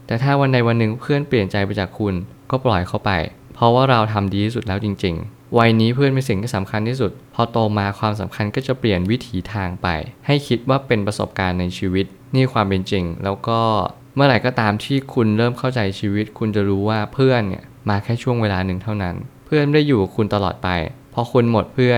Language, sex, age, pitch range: Thai, male, 20-39, 100-125 Hz